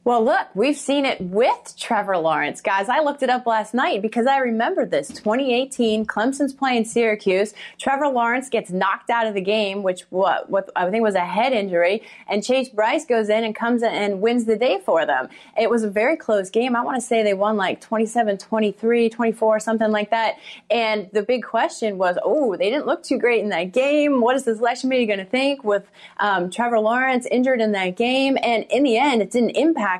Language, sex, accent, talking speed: English, female, American, 215 wpm